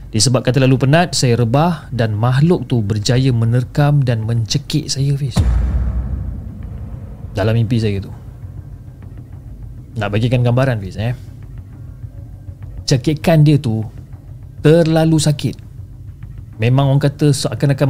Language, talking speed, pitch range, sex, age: Malay, 110 wpm, 115-140 Hz, male, 30-49